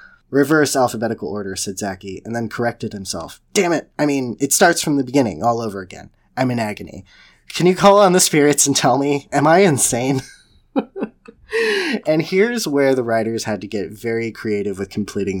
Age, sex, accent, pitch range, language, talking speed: 20-39, male, American, 105-140 Hz, English, 185 wpm